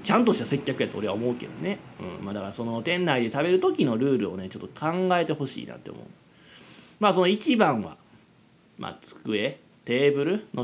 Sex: male